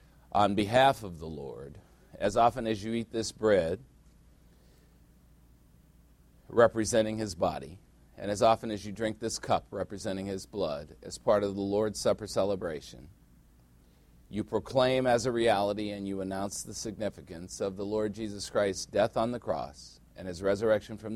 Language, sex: English, male